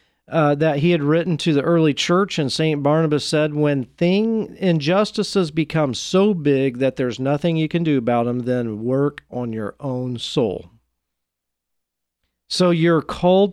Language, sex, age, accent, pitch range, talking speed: English, male, 40-59, American, 125-170 Hz, 160 wpm